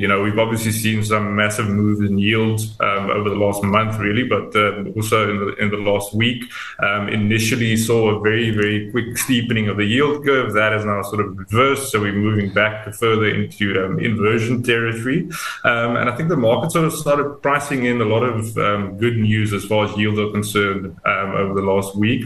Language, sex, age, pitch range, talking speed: English, male, 20-39, 100-115 Hz, 215 wpm